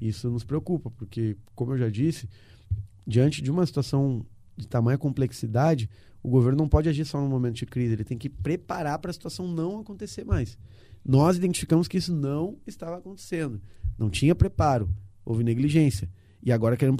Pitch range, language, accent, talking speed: 110-140 Hz, Portuguese, Brazilian, 175 wpm